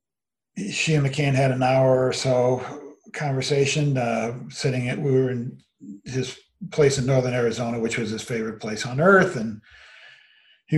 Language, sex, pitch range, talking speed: English, male, 115-140 Hz, 160 wpm